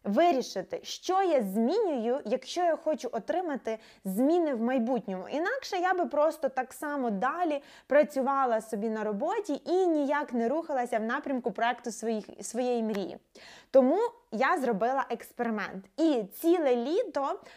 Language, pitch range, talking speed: Ukrainian, 240-325 Hz, 135 wpm